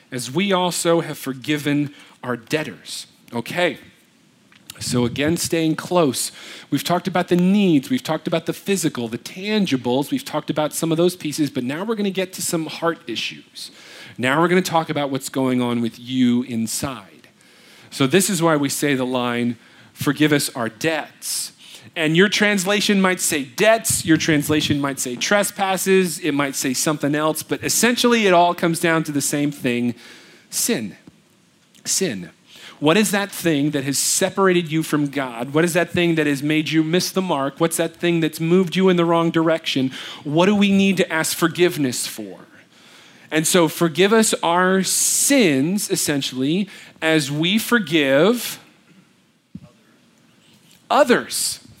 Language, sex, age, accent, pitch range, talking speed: English, male, 40-59, American, 145-185 Hz, 165 wpm